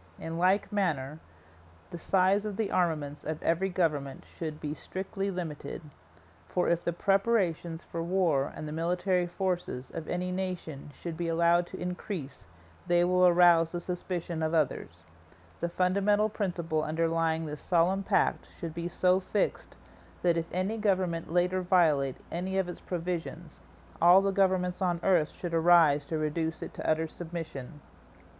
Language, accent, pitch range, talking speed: English, American, 150-185 Hz, 155 wpm